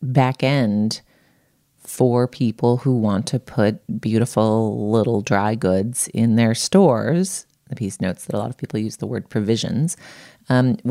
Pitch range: 110-155 Hz